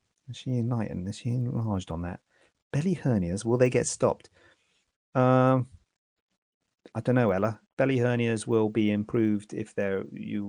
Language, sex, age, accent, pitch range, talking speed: English, male, 30-49, British, 95-130 Hz, 160 wpm